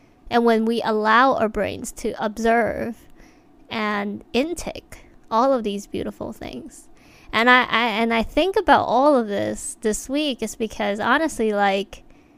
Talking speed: 150 wpm